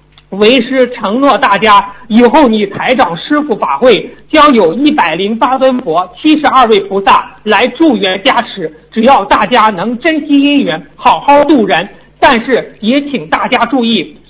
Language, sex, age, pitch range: Chinese, male, 50-69, 225-285 Hz